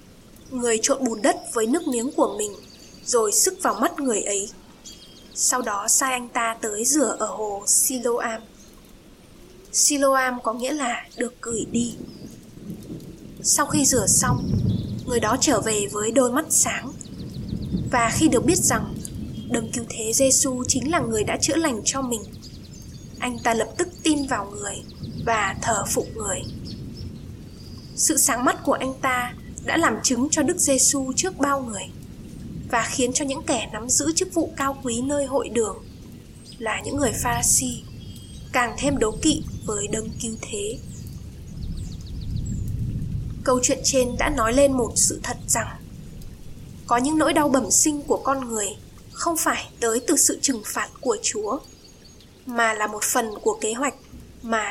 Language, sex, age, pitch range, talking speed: Vietnamese, female, 10-29, 225-290 Hz, 165 wpm